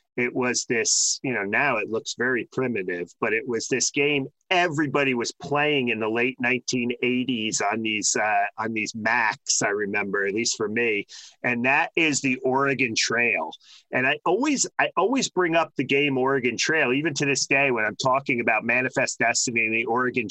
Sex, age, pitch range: male, 40-59, 120-145 Hz